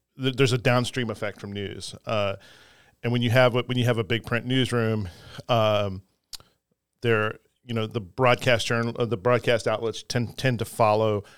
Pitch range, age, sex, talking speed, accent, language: 110-130 Hz, 40-59, male, 180 wpm, American, English